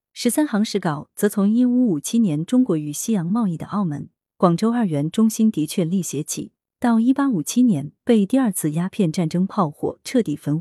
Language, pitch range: Chinese, 160-225 Hz